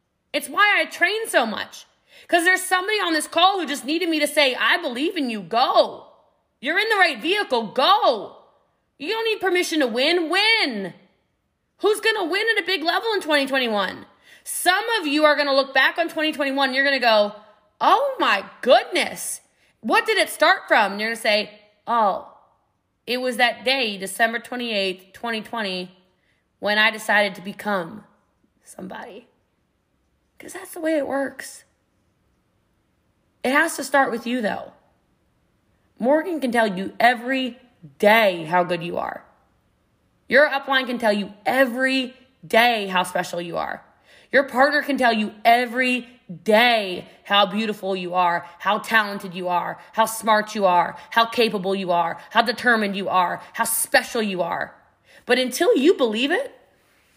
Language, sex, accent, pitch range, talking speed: English, female, American, 210-305 Hz, 160 wpm